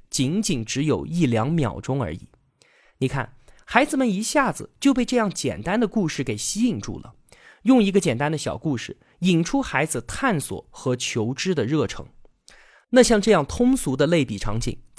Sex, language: male, Chinese